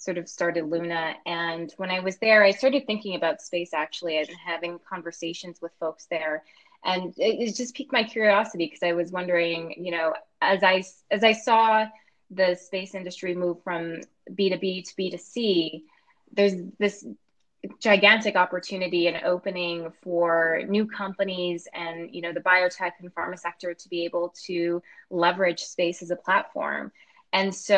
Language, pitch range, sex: English, 170-195 Hz, female